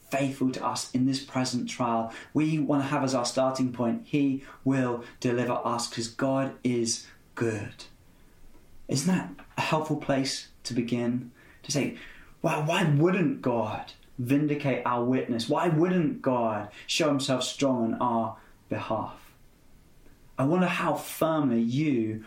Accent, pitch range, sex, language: British, 120-150 Hz, male, English